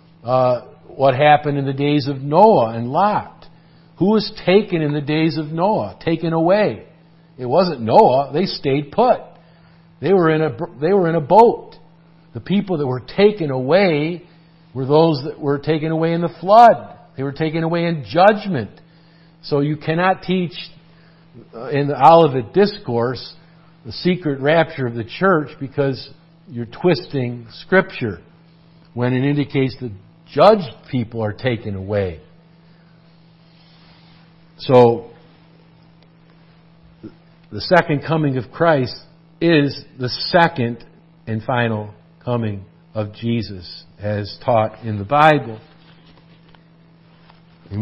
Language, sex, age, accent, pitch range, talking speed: English, male, 50-69, American, 120-165 Hz, 125 wpm